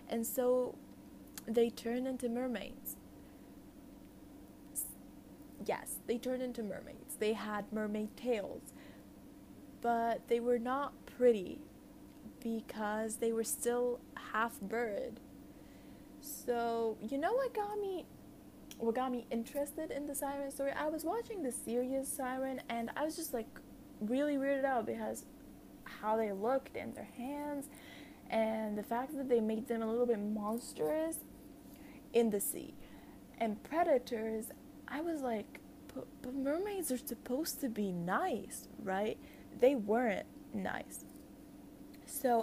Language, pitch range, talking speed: English, 225-275 Hz, 130 wpm